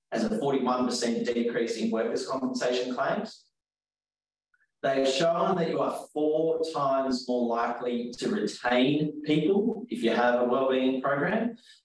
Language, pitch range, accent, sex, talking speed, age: English, 120-155 Hz, Australian, male, 125 wpm, 20-39